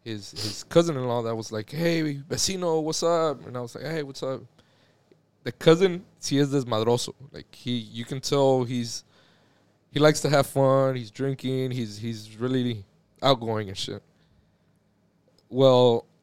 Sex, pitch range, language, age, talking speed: male, 120-155 Hz, English, 20-39, 150 wpm